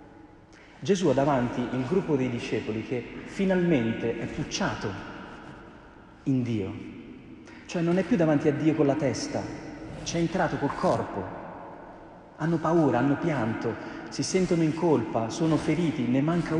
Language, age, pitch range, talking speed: Italian, 40-59, 115-155 Hz, 145 wpm